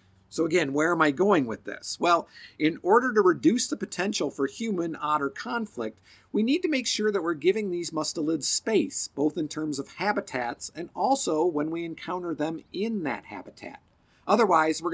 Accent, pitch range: American, 155-220 Hz